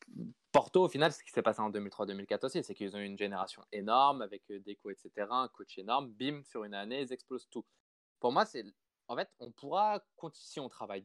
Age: 20-39